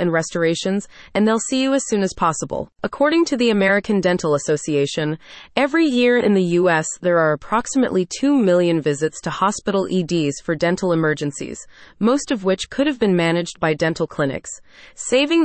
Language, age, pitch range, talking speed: English, 30-49, 170-230 Hz, 170 wpm